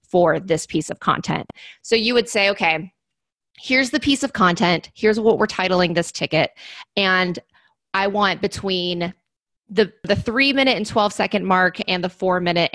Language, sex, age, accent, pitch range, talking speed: English, female, 20-39, American, 165-200 Hz, 175 wpm